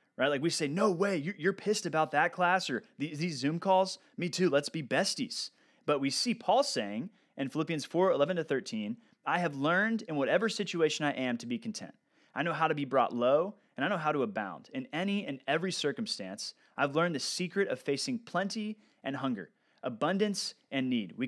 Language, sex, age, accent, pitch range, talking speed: English, male, 30-49, American, 145-210 Hz, 205 wpm